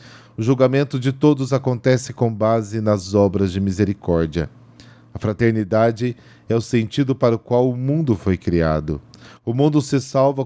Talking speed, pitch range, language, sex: 155 wpm, 100-125 Hz, Portuguese, male